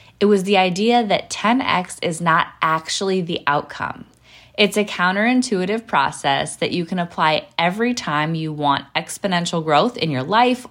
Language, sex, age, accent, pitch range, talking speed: English, female, 20-39, American, 160-210 Hz, 155 wpm